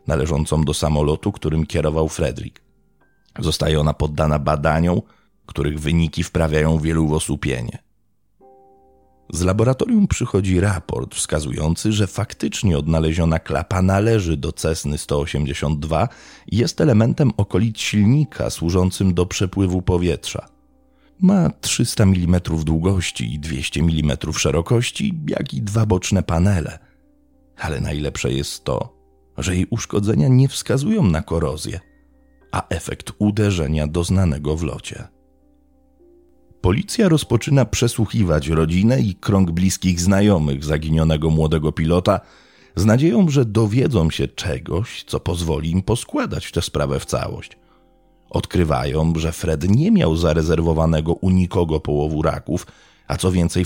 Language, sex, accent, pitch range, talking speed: Polish, male, native, 80-105 Hz, 120 wpm